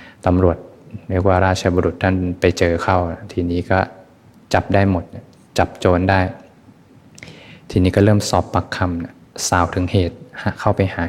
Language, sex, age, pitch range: Thai, male, 20-39, 90-95 Hz